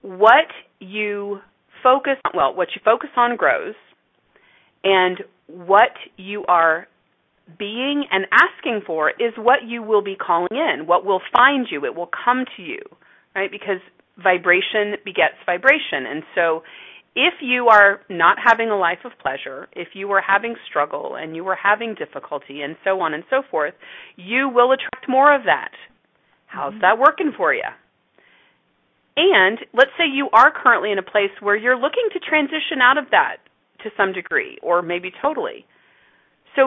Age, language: 40-59, English